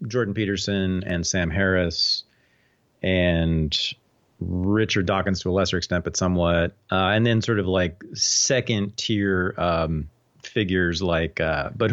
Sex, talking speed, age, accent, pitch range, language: male, 135 wpm, 40-59, American, 90-115 Hz, English